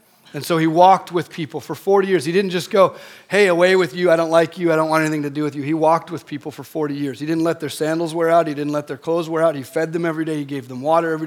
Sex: male